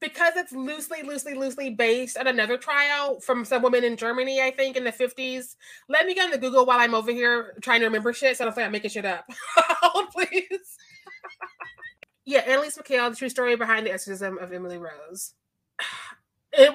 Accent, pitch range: American, 225-265 Hz